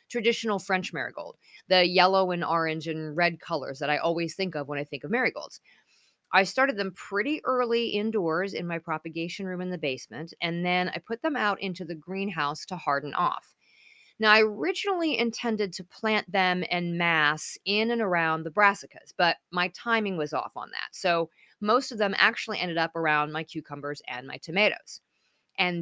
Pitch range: 165-220 Hz